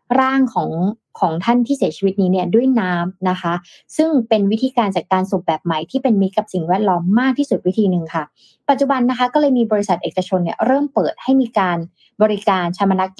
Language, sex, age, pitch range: Thai, female, 20-39, 180-235 Hz